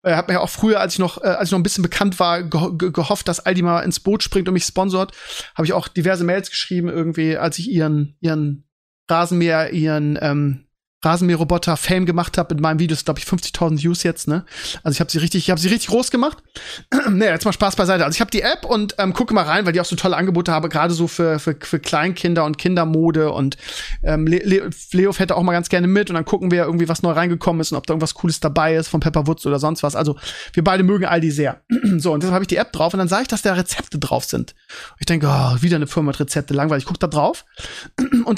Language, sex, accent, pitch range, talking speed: German, male, German, 165-210 Hz, 260 wpm